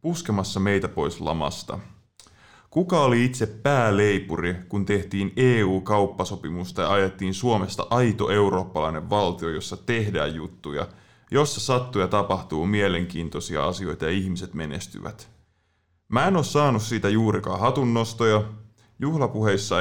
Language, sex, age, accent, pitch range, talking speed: Finnish, male, 20-39, native, 95-120 Hz, 110 wpm